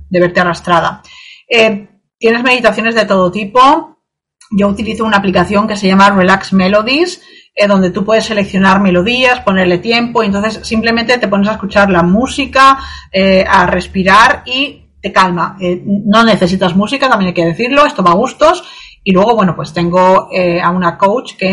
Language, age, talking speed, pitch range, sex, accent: Spanish, 30-49, 175 wpm, 180-220 Hz, female, Spanish